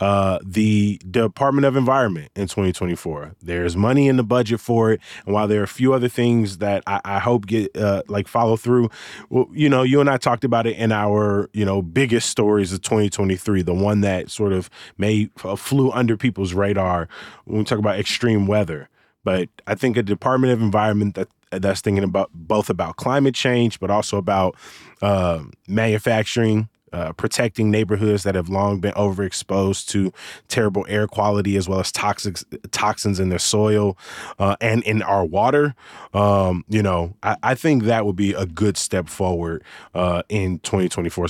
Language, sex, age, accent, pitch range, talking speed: English, male, 20-39, American, 95-115 Hz, 185 wpm